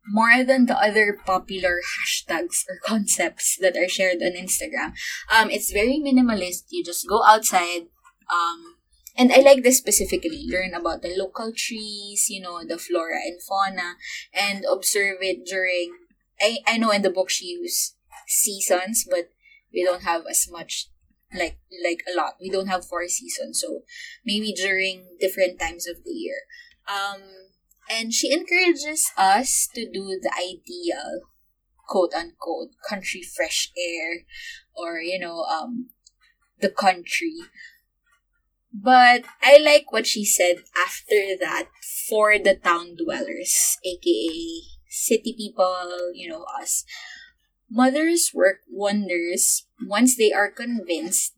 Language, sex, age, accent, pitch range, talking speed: English, female, 20-39, Filipino, 185-275 Hz, 140 wpm